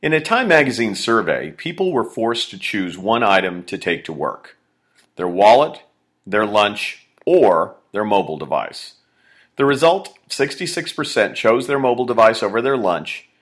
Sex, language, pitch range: male, English, 95-125 Hz